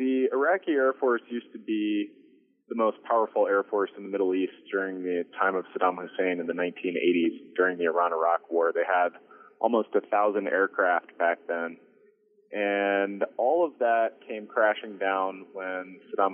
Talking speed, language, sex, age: 170 wpm, English, male, 20-39